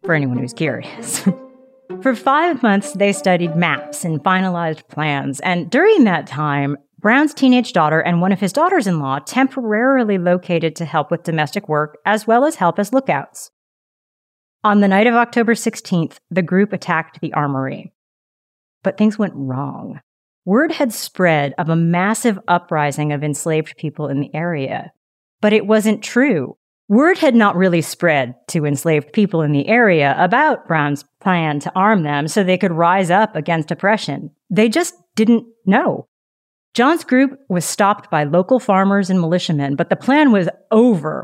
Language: English